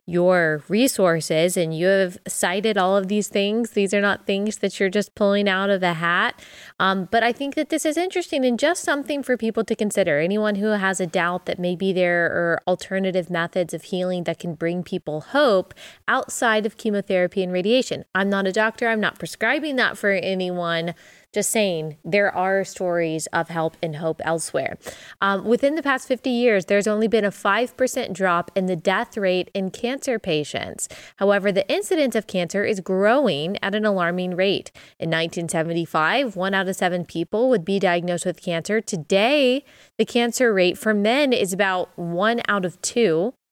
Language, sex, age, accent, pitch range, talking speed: English, female, 20-39, American, 180-225 Hz, 185 wpm